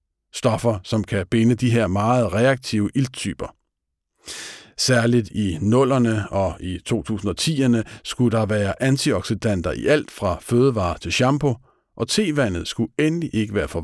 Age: 50-69